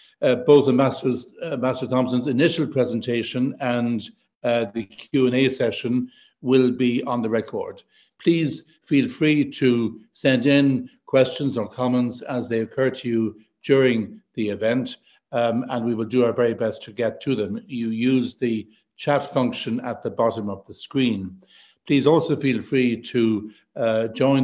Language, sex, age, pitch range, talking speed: English, male, 60-79, 115-135 Hz, 160 wpm